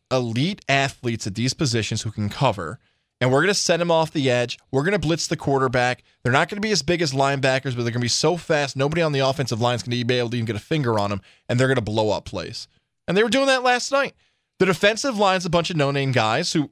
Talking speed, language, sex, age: 285 wpm, English, male, 20-39